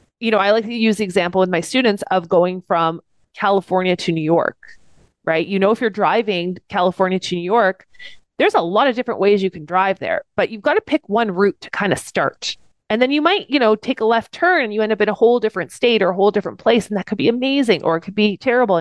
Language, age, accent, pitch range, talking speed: English, 30-49, American, 185-235 Hz, 265 wpm